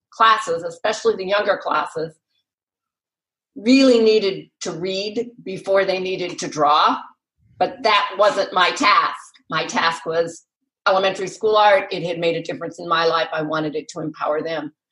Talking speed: 155 wpm